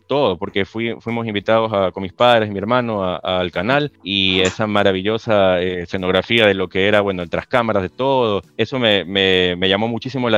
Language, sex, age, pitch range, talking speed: Spanish, male, 30-49, 100-120 Hz, 215 wpm